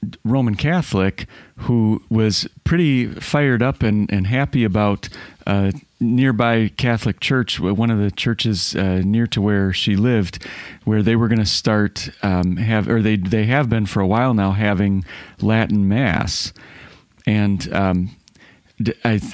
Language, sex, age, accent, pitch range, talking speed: English, male, 40-59, American, 100-120 Hz, 150 wpm